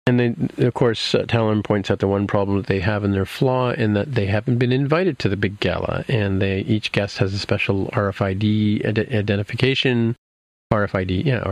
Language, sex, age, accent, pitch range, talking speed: English, male, 40-59, American, 100-125 Hz, 205 wpm